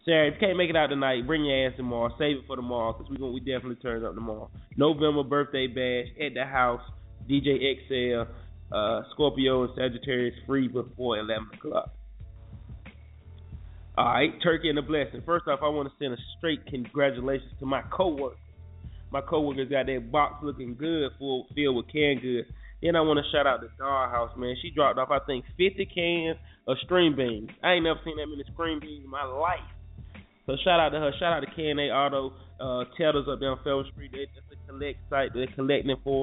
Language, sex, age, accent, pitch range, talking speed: English, male, 20-39, American, 120-145 Hz, 205 wpm